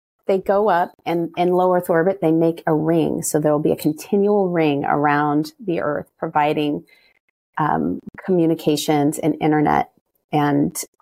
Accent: American